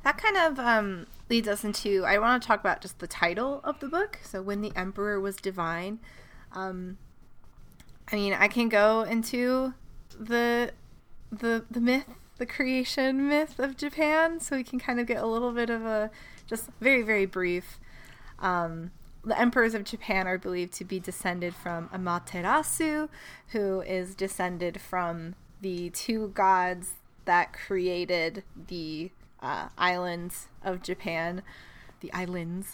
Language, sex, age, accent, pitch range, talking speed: English, female, 20-39, American, 175-225 Hz, 150 wpm